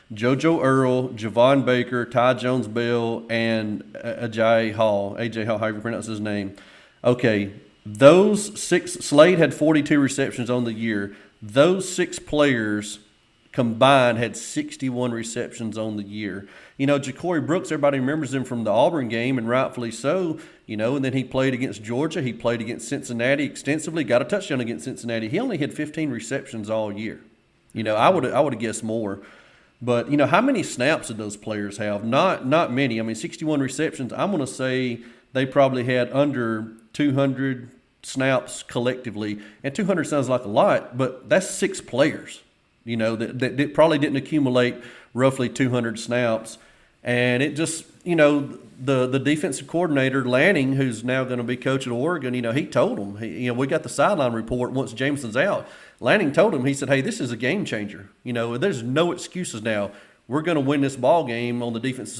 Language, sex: English, male